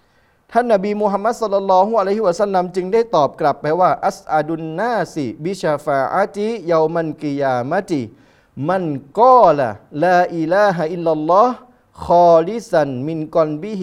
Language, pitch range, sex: Thai, 150-210 Hz, male